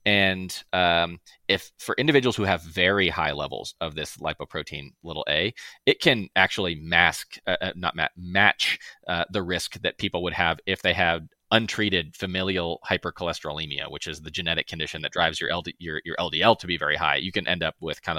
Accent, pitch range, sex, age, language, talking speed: American, 80-95 Hz, male, 30-49, English, 190 wpm